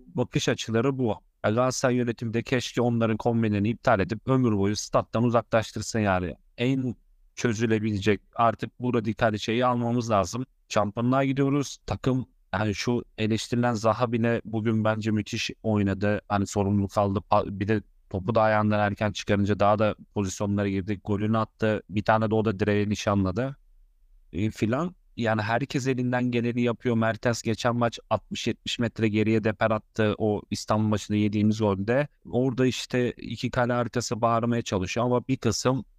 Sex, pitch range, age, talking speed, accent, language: male, 105-120 Hz, 30-49, 145 wpm, native, Turkish